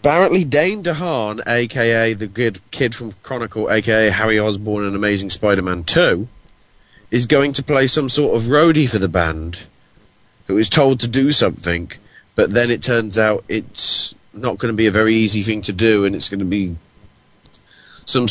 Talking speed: 180 wpm